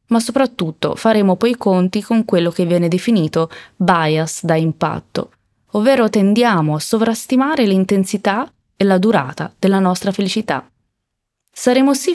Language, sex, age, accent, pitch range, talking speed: Italian, female, 20-39, native, 165-215 Hz, 135 wpm